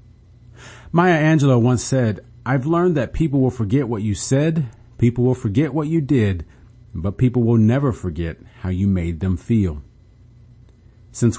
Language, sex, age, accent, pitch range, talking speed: English, male, 40-59, American, 105-125 Hz, 160 wpm